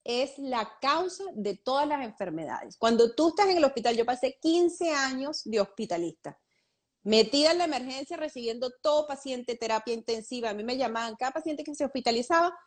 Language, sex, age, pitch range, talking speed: Spanish, female, 30-49, 200-270 Hz, 175 wpm